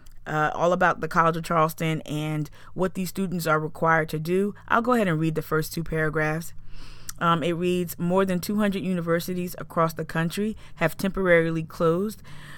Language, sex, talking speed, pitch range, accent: English, female, 175 wpm, 155-180 Hz, American